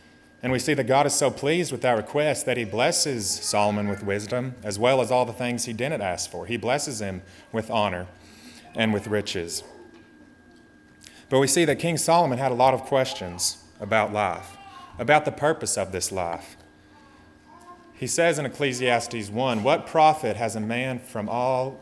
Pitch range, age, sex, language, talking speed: 100-135 Hz, 30-49, male, English, 180 wpm